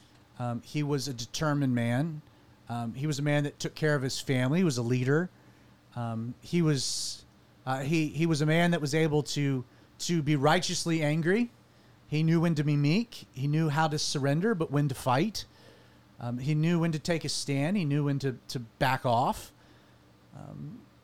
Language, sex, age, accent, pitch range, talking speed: English, male, 30-49, American, 120-160 Hz, 195 wpm